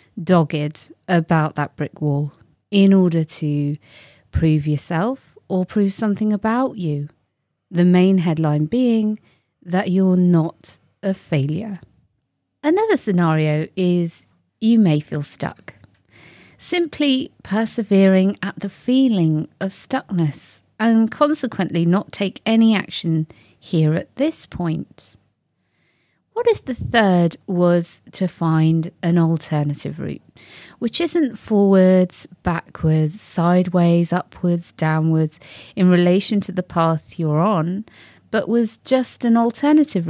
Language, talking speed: English, 115 wpm